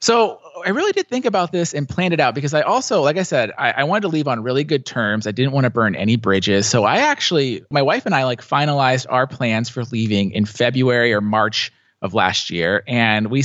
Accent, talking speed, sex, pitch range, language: American, 240 wpm, male, 110-140 Hz, English